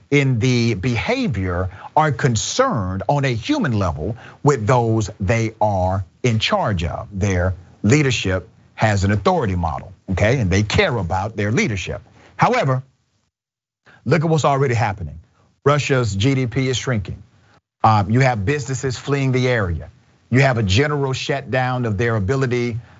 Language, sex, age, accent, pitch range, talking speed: English, male, 40-59, American, 105-130 Hz, 140 wpm